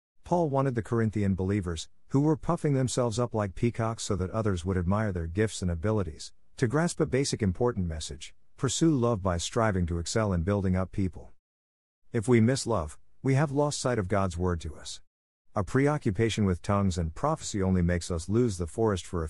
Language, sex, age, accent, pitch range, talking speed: English, male, 50-69, American, 85-115 Hz, 200 wpm